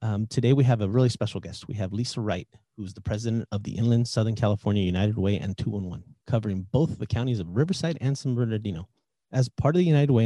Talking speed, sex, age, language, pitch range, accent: 240 wpm, male, 30-49, English, 100-125 Hz, American